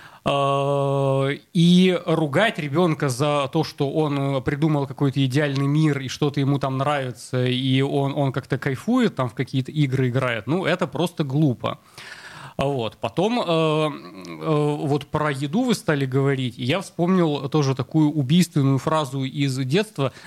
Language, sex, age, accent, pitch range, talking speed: Russian, male, 30-49, native, 140-170 Hz, 140 wpm